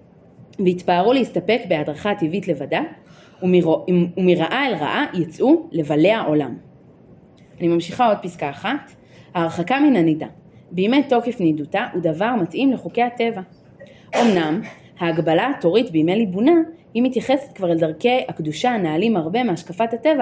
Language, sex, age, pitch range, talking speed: Hebrew, female, 30-49, 170-260 Hz, 120 wpm